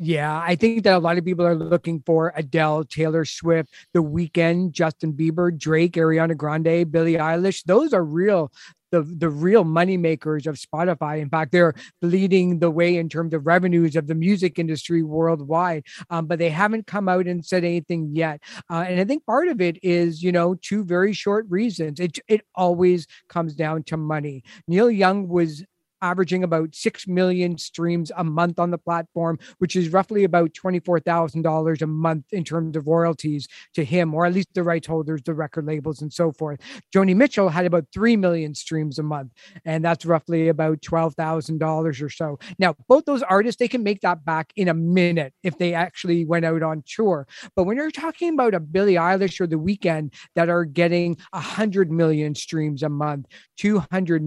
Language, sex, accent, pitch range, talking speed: English, male, American, 160-180 Hz, 190 wpm